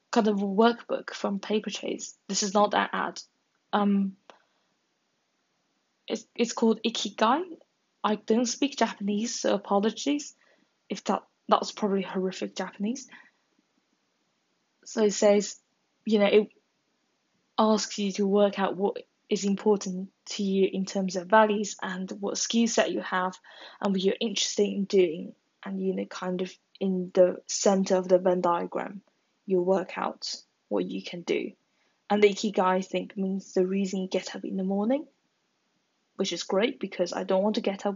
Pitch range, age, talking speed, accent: 190-225 Hz, 10-29, 165 wpm, British